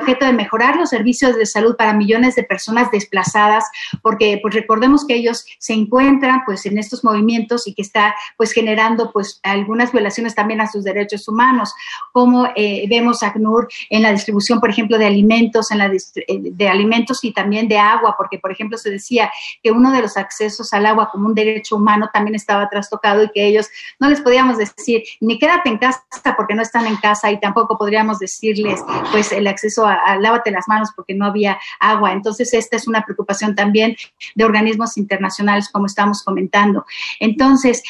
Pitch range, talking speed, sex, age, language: 210-235 Hz, 175 wpm, female, 40-59, Spanish